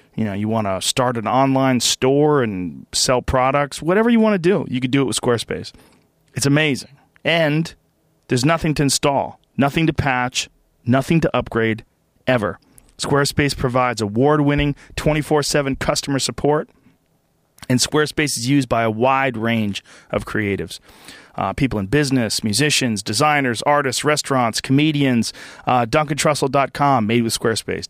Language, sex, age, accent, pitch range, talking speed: English, male, 40-59, American, 115-145 Hz, 145 wpm